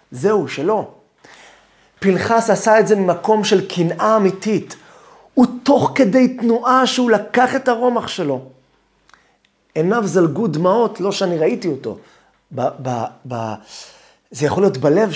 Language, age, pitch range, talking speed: Hebrew, 30-49, 175-235 Hz, 130 wpm